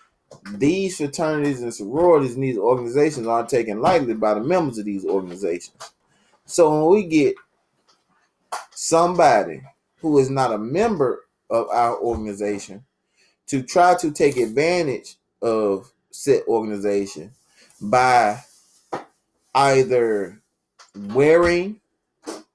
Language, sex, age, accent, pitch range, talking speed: English, male, 20-39, American, 115-155 Hz, 105 wpm